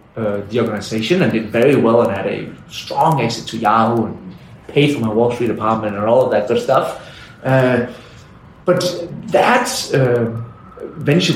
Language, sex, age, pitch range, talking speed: English, male, 30-49, 120-165 Hz, 170 wpm